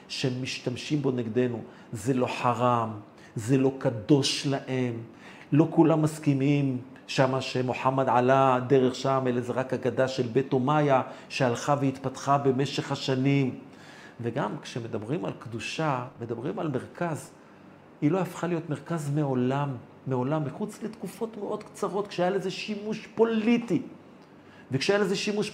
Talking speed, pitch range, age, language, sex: 125 wpm, 135-200 Hz, 40-59, Hebrew, male